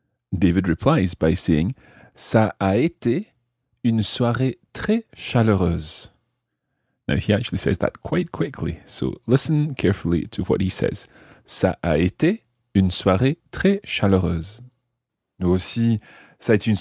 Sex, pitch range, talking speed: male, 90-125 Hz, 135 wpm